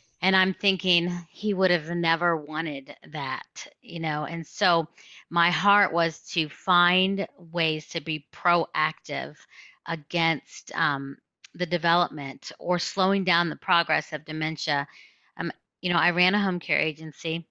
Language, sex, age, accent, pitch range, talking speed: English, female, 30-49, American, 160-190 Hz, 145 wpm